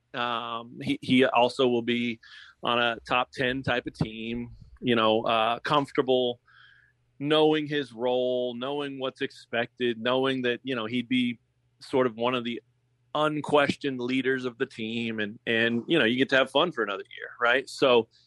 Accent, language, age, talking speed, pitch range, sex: American, English, 30-49, 175 wpm, 120-140 Hz, male